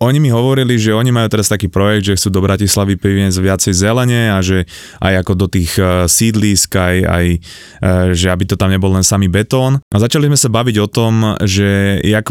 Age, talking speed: 20-39, 205 wpm